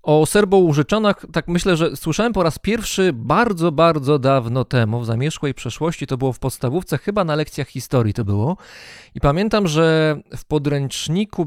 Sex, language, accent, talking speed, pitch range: male, Polish, native, 160 wpm, 130-170 Hz